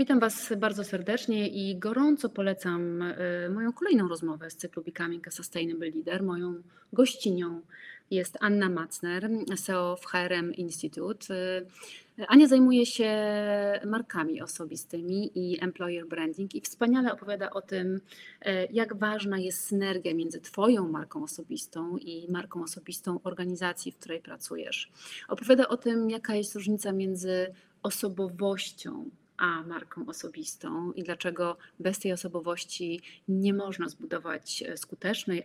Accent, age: native, 30-49